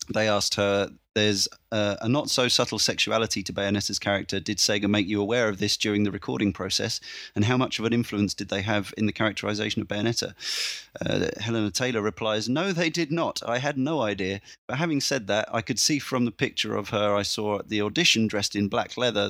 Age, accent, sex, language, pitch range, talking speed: 30-49, British, male, English, 100-115 Hz, 220 wpm